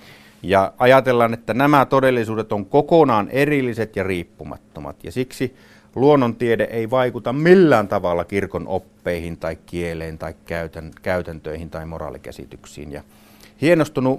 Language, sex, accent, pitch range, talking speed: Finnish, male, native, 95-115 Hz, 115 wpm